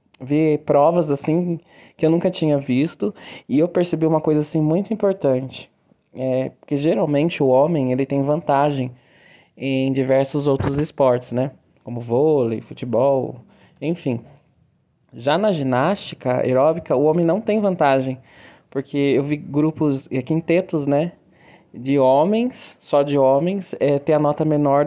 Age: 20-39